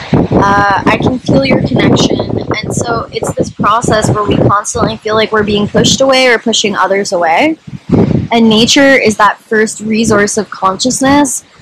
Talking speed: 165 wpm